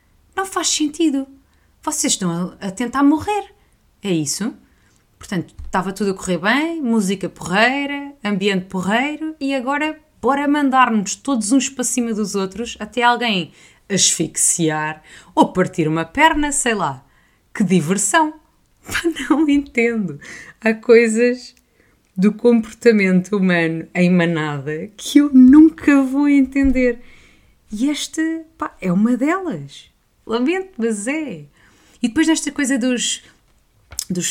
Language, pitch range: Portuguese, 175-270 Hz